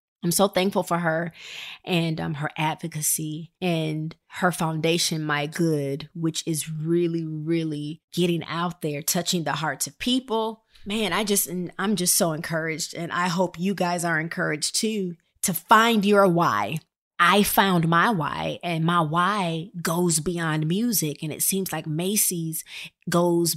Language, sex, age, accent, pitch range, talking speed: English, female, 20-39, American, 155-180 Hz, 155 wpm